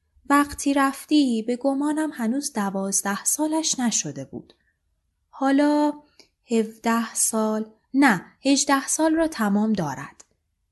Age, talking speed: 20-39, 100 wpm